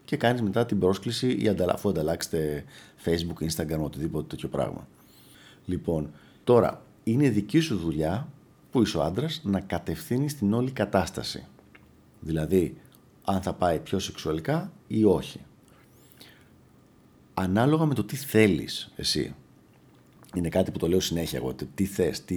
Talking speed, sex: 140 wpm, male